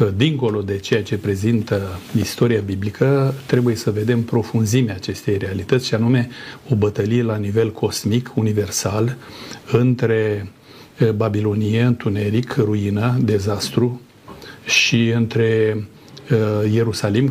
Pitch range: 105-125 Hz